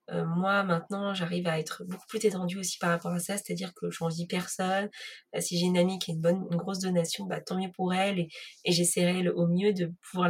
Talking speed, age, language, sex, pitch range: 260 wpm, 20-39, French, female, 175-210 Hz